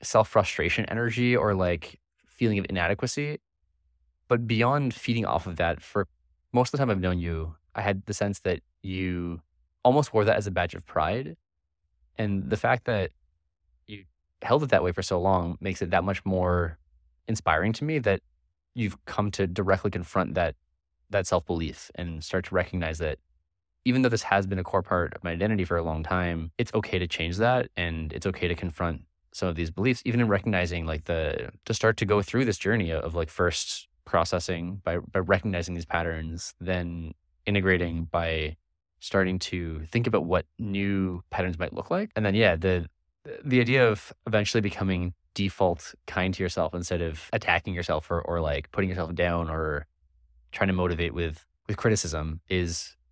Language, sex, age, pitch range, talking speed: English, male, 20-39, 80-100 Hz, 185 wpm